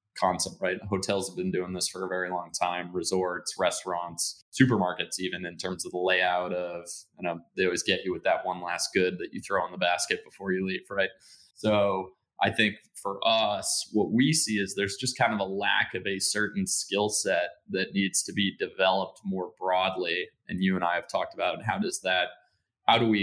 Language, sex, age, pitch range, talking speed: English, male, 20-39, 90-105 Hz, 215 wpm